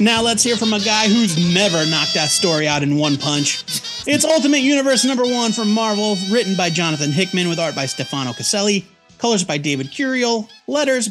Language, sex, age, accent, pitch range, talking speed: English, male, 30-49, American, 150-225 Hz, 195 wpm